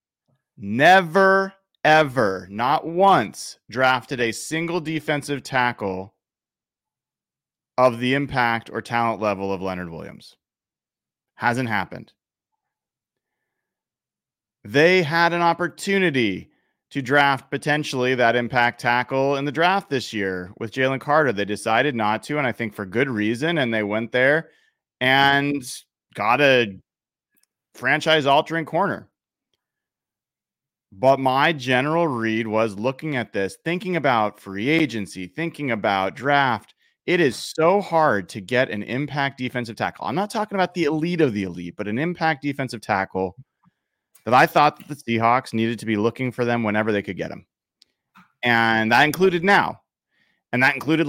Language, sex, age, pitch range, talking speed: English, male, 30-49, 110-155 Hz, 140 wpm